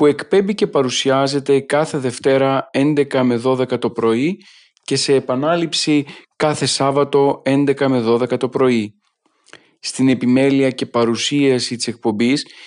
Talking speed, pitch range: 130 wpm, 130-155 Hz